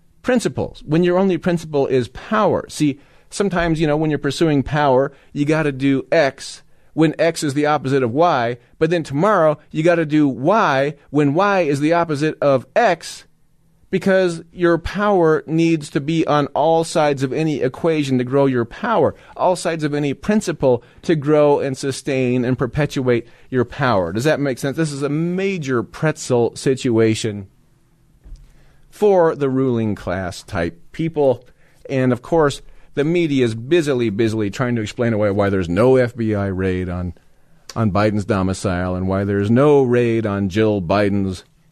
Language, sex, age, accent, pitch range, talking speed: English, male, 40-59, American, 110-155 Hz, 165 wpm